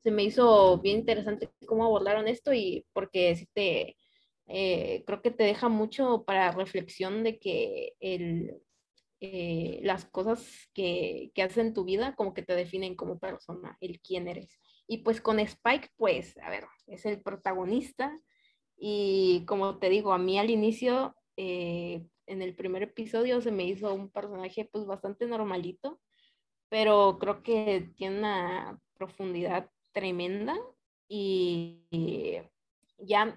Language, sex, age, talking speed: Spanish, female, 20-39, 145 wpm